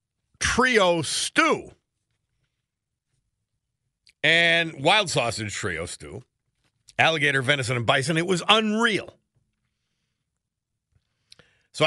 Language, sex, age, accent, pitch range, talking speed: English, male, 50-69, American, 125-170 Hz, 75 wpm